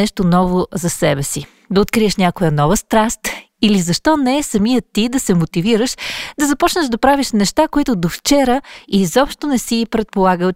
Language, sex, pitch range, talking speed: Bulgarian, female, 180-240 Hz, 170 wpm